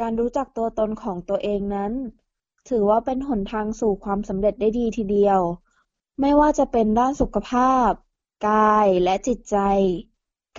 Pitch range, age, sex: 200-245 Hz, 20-39, female